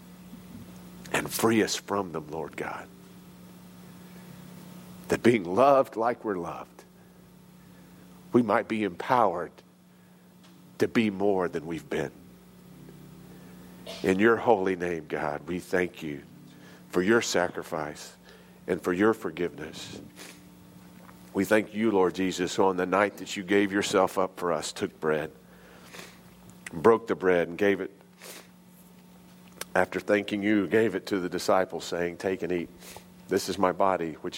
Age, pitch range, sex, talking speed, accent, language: 50-69, 90-115 Hz, male, 135 wpm, American, English